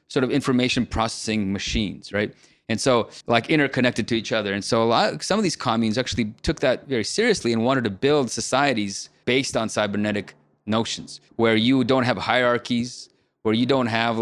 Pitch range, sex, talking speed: 105-125 Hz, male, 185 wpm